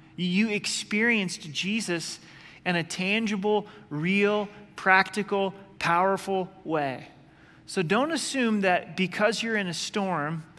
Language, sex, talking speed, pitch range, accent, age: English, male, 110 wpm, 155-190 Hz, American, 30-49